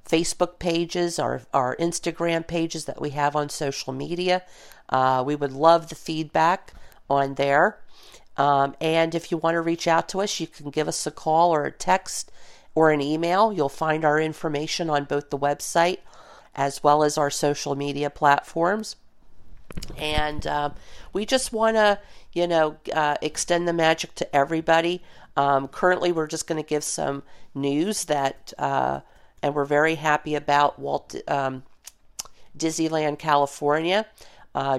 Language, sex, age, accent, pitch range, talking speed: English, female, 50-69, American, 145-165 Hz, 160 wpm